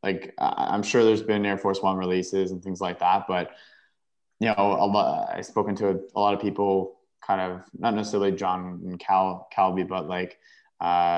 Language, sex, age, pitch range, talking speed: English, male, 20-39, 90-105 Hz, 185 wpm